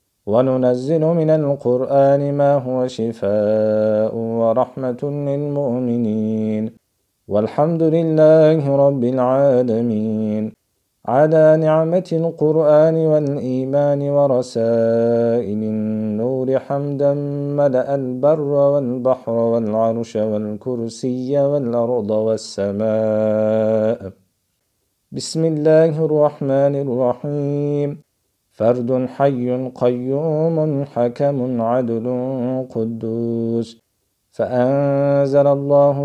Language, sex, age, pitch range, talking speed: Turkish, male, 50-69, 115-140 Hz, 65 wpm